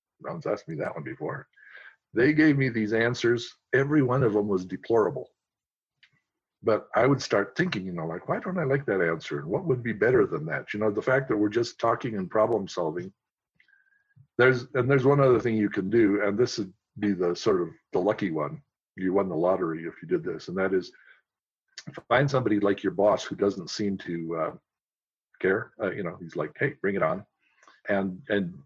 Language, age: English, 50-69